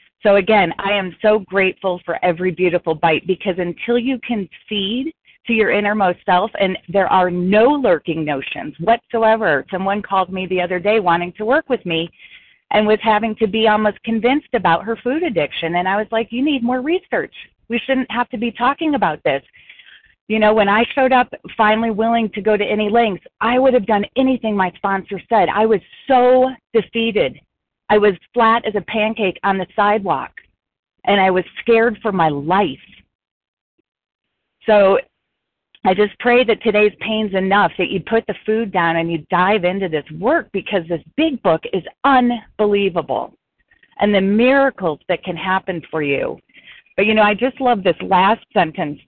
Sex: female